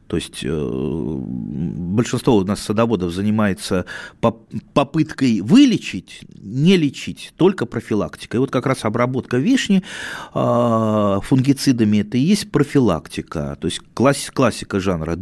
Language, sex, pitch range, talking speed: Russian, male, 100-140 Hz, 105 wpm